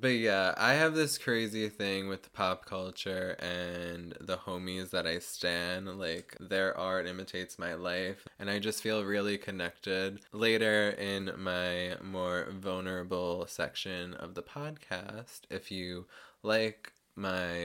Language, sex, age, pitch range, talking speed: English, male, 20-39, 90-110 Hz, 145 wpm